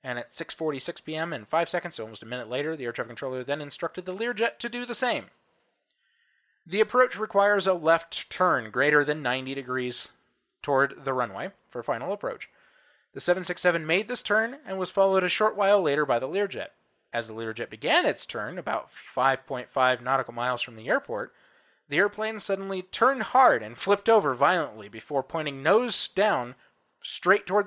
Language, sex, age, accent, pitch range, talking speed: English, male, 20-39, American, 140-195 Hz, 180 wpm